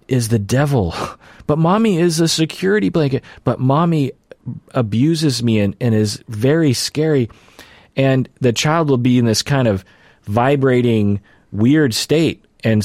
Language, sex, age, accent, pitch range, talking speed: English, male, 30-49, American, 105-130 Hz, 145 wpm